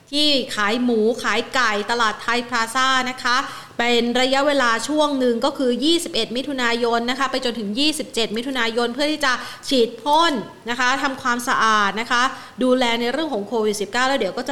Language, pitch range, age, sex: Thai, 215-260 Hz, 30-49, female